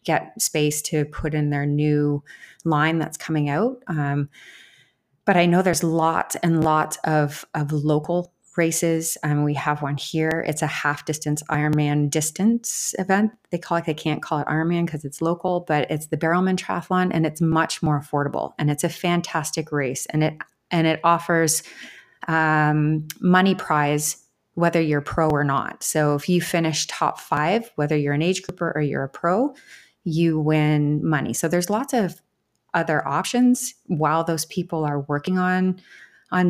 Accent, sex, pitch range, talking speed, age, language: American, female, 150-175 Hz, 175 wpm, 30-49, English